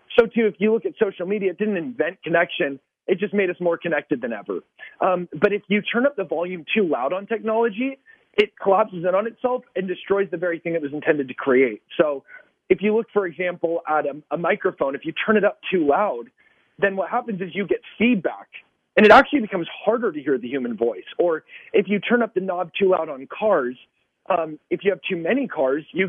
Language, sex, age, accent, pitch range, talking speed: English, male, 30-49, American, 155-210 Hz, 230 wpm